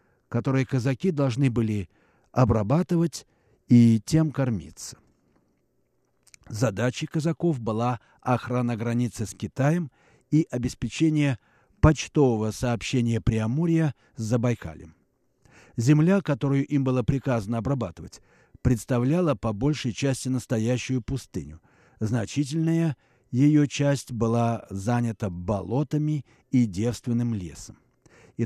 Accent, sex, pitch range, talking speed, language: native, male, 110-145 Hz, 95 wpm, Russian